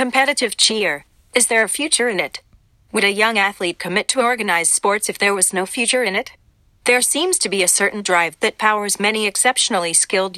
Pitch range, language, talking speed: 190-235 Hz, English, 200 wpm